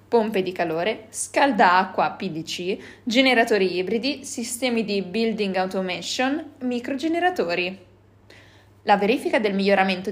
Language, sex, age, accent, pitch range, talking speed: Italian, female, 20-39, native, 190-250 Hz, 95 wpm